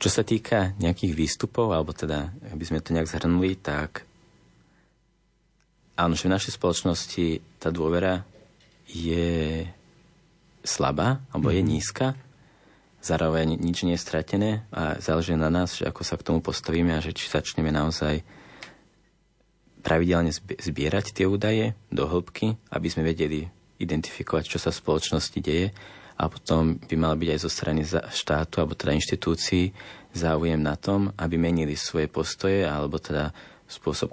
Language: Slovak